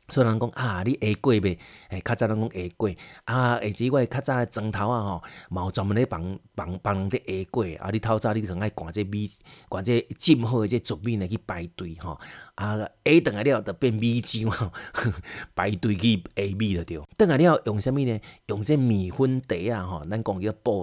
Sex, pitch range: male, 95-120 Hz